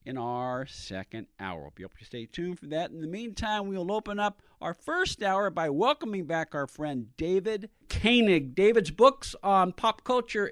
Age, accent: 50-69, American